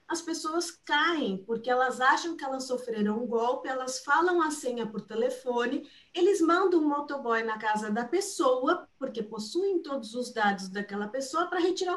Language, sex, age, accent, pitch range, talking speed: Portuguese, female, 50-69, Brazilian, 225-330 Hz, 170 wpm